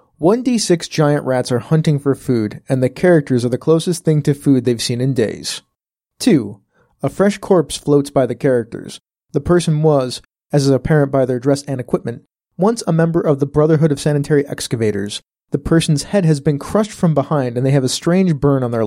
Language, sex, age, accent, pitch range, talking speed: English, male, 30-49, American, 135-170 Hz, 205 wpm